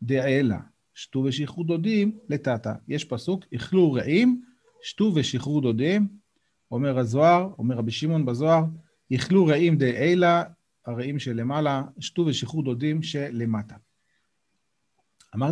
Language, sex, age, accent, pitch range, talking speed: Hebrew, male, 40-59, native, 125-195 Hz, 85 wpm